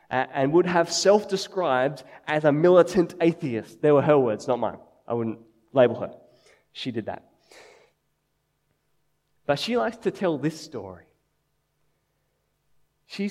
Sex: male